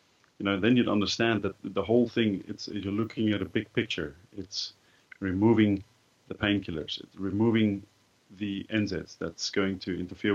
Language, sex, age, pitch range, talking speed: English, male, 40-59, 90-105 Hz, 160 wpm